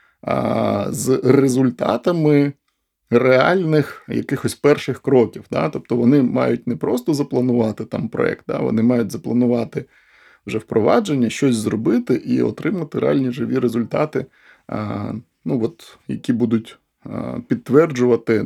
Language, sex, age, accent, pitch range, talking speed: Ukrainian, male, 20-39, native, 110-130 Hz, 115 wpm